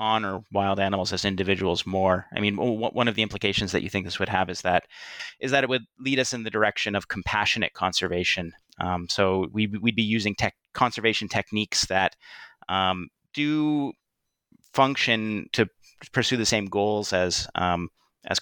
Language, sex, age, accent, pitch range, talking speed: English, male, 30-49, American, 95-110 Hz, 175 wpm